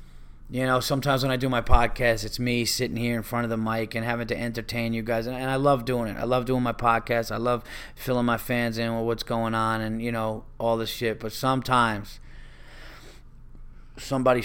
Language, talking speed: English, 220 wpm